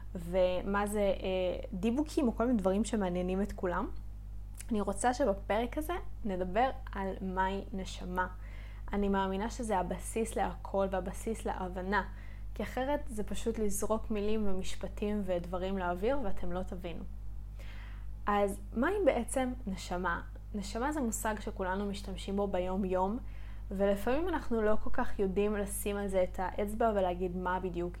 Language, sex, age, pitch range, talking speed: Hebrew, female, 20-39, 180-225 Hz, 135 wpm